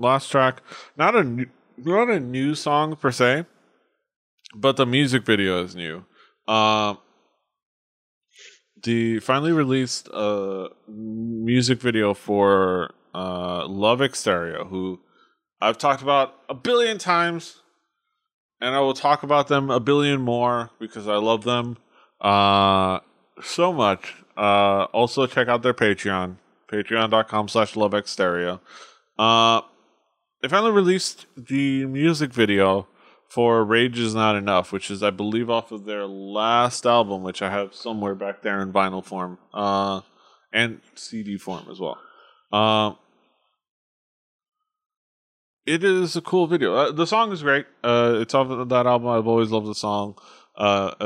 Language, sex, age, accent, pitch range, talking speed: English, male, 20-39, American, 100-135 Hz, 140 wpm